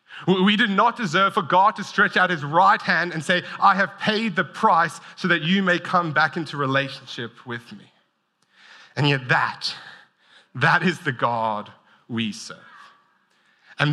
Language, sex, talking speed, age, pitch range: English, male, 170 wpm, 30-49, 130-175 Hz